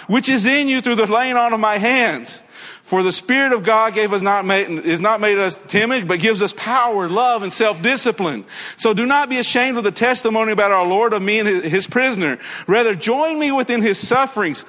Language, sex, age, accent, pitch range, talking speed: English, male, 50-69, American, 210-255 Hz, 220 wpm